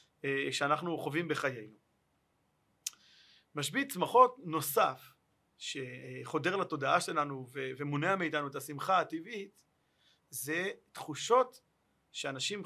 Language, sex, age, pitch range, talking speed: Hebrew, male, 30-49, 150-195 Hz, 80 wpm